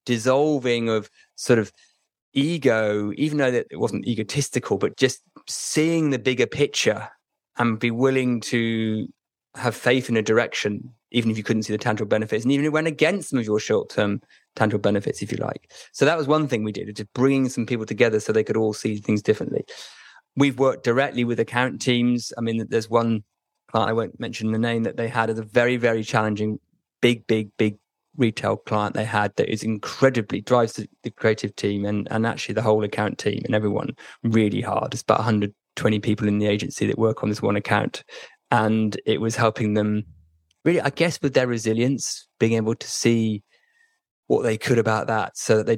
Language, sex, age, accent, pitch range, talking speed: English, male, 20-39, British, 105-125 Hz, 200 wpm